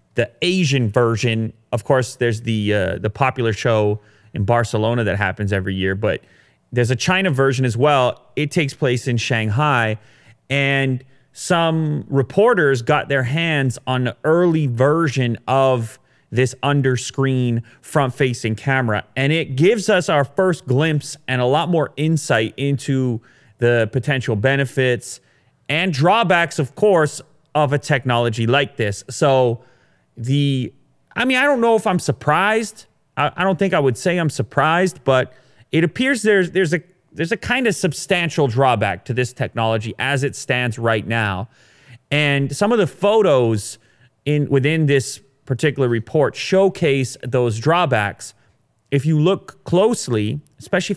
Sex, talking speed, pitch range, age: male, 150 wpm, 115-155 Hz, 30-49